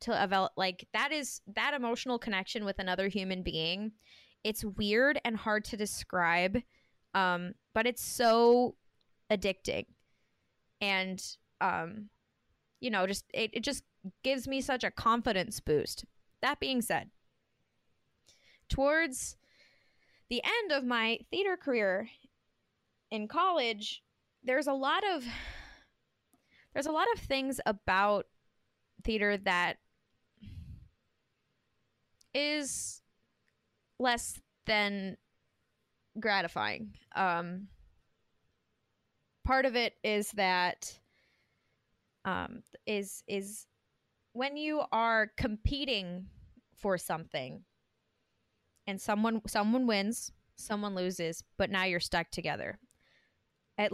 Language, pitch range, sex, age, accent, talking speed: English, 185-240 Hz, female, 10-29, American, 100 wpm